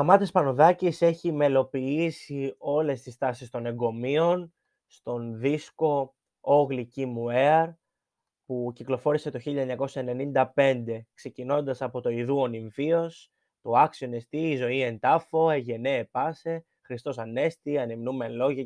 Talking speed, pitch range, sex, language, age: 115 wpm, 120-155 Hz, male, Greek, 20-39